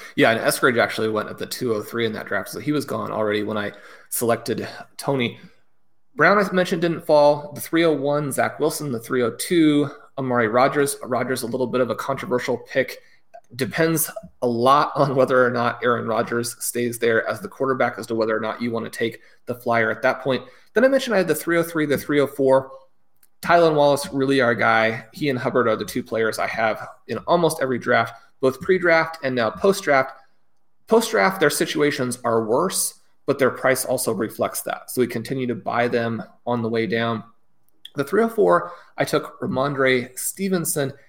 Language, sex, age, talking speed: English, male, 30-49, 185 wpm